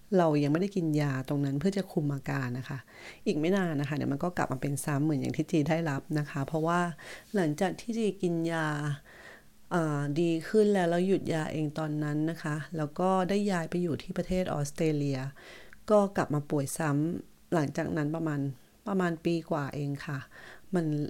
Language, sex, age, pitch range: English, female, 30-49, 145-175 Hz